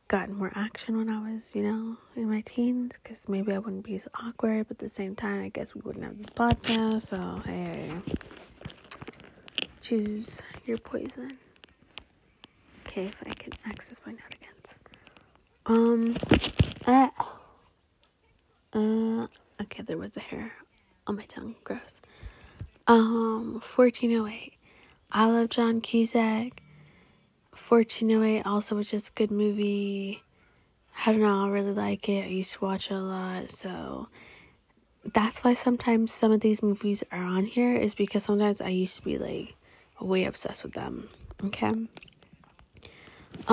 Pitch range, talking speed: 200-230 Hz, 150 wpm